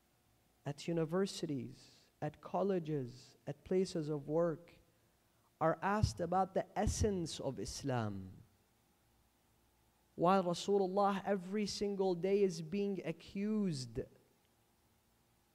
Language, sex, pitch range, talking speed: English, male, 115-175 Hz, 90 wpm